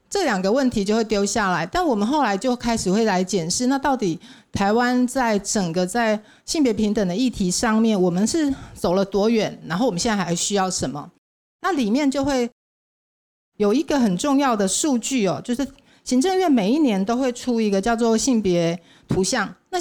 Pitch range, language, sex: 195-250 Hz, Chinese, female